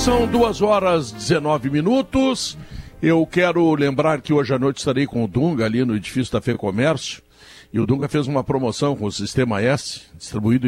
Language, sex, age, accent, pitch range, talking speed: Portuguese, male, 60-79, Brazilian, 120-165 Hz, 190 wpm